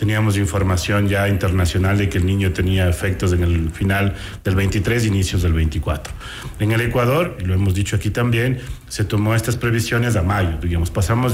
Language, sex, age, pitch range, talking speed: Spanish, male, 40-59, 95-115 Hz, 180 wpm